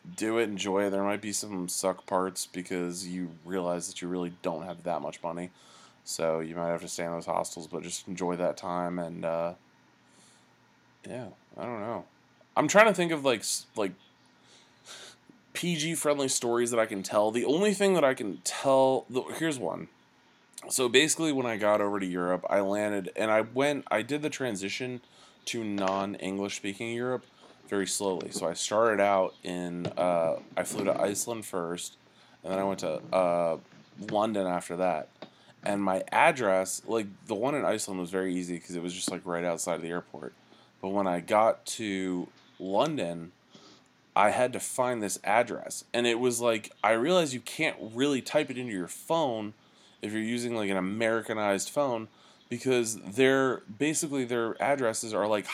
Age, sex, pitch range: 20-39, male, 90-120 Hz